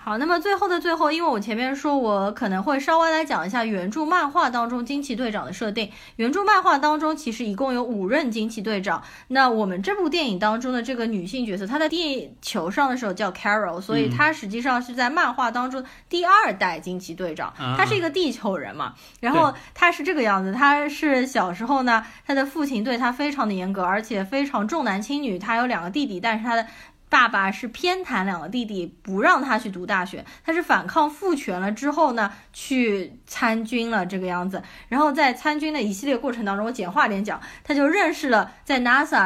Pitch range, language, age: 210-290 Hz, Chinese, 20-39